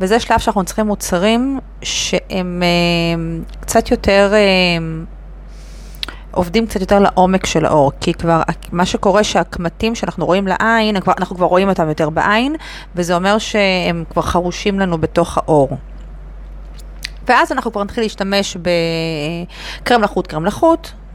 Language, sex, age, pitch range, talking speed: Hebrew, female, 30-49, 170-200 Hz, 140 wpm